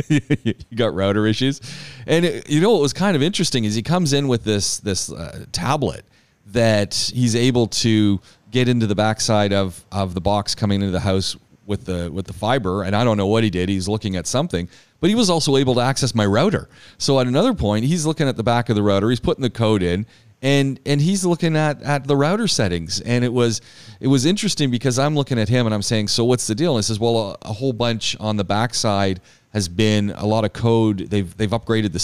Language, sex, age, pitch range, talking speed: English, male, 30-49, 100-125 Hz, 240 wpm